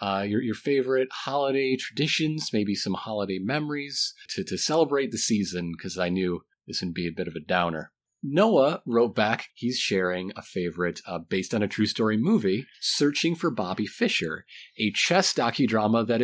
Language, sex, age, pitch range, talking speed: English, male, 30-49, 90-120 Hz, 175 wpm